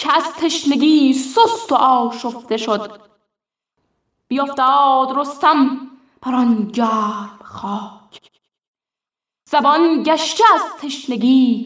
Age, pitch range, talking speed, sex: 10-29, 255-345 Hz, 75 wpm, female